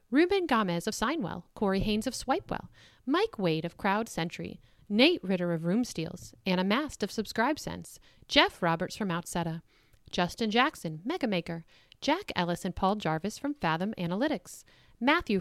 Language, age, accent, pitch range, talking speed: English, 40-59, American, 175-255 Hz, 150 wpm